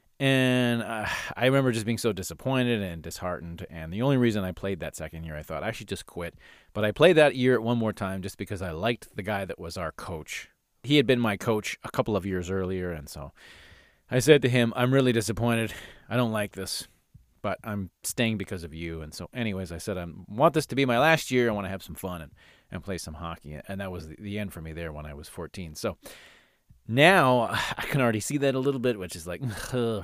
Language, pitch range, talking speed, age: English, 95-130 Hz, 245 wpm, 30-49